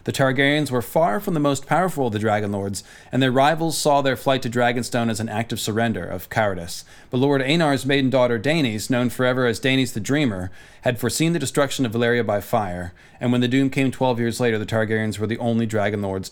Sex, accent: male, American